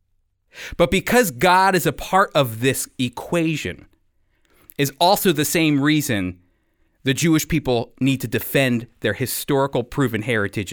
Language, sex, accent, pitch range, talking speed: English, male, American, 115-175 Hz, 135 wpm